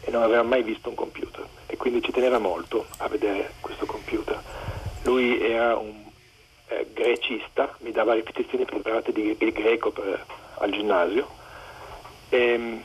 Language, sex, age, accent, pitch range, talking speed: Italian, male, 50-69, native, 340-445 Hz, 150 wpm